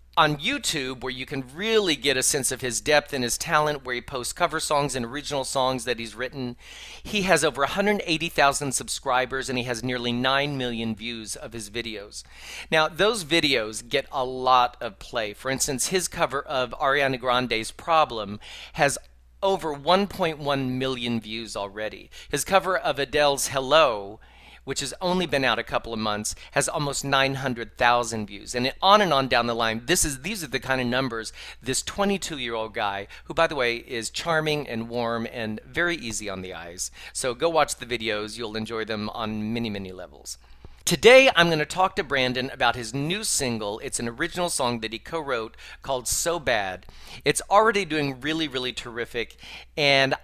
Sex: male